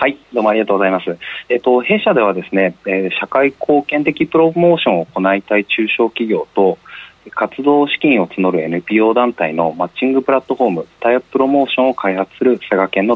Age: 40-59